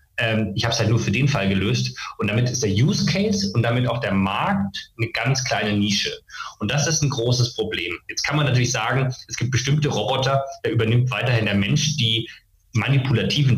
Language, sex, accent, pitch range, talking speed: German, male, German, 100-130 Hz, 205 wpm